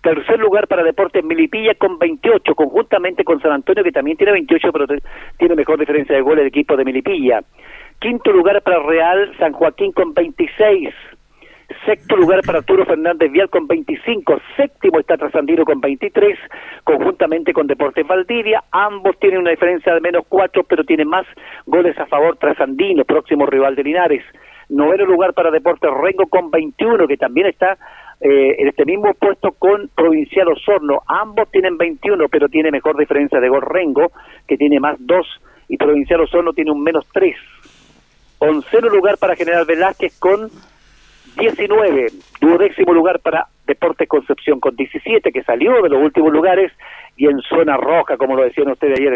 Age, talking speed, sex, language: 50-69, 165 wpm, male, Spanish